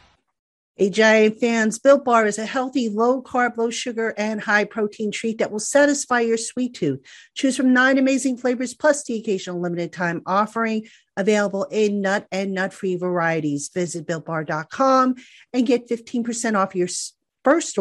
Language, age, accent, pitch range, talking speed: English, 50-69, American, 185-245 Hz, 140 wpm